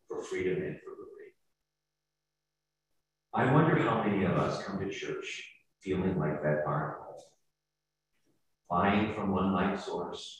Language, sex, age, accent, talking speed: English, male, 40-59, American, 140 wpm